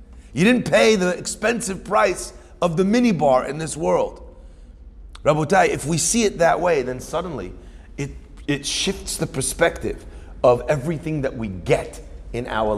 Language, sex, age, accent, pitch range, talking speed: English, male, 40-59, American, 115-175 Hz, 155 wpm